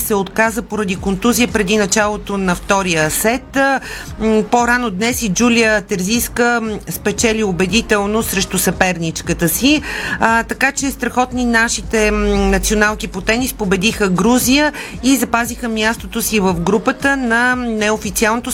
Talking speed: 115 wpm